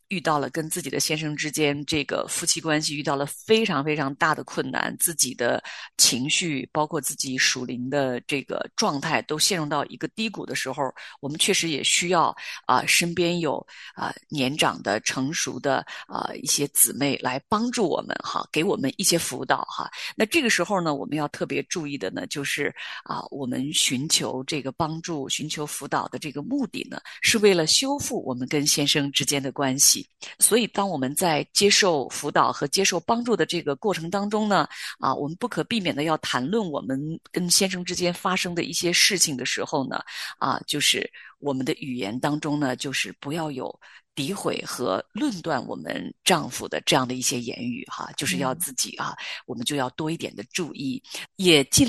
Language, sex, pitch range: Chinese, female, 140-190 Hz